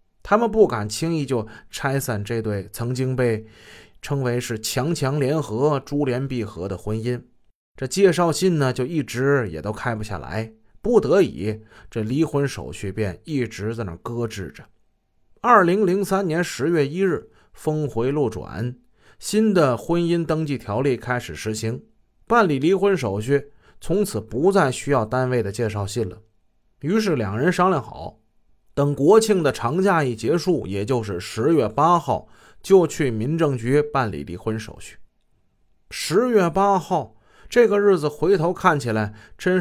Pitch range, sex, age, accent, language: 110-175 Hz, male, 20-39, native, Chinese